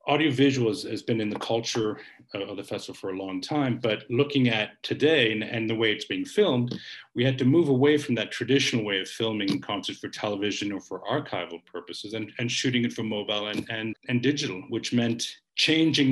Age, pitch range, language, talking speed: 50-69, 105-140 Hz, English, 200 wpm